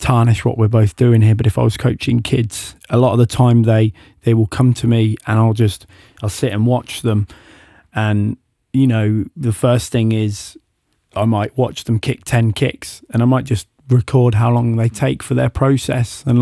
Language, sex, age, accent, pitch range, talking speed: English, male, 20-39, British, 115-130 Hz, 210 wpm